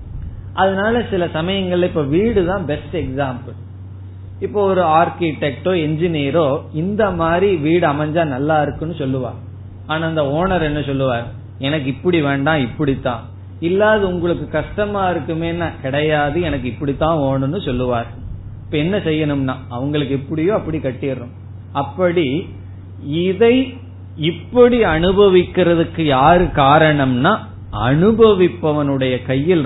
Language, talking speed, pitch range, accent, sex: Tamil, 105 wpm, 115-175 Hz, native, male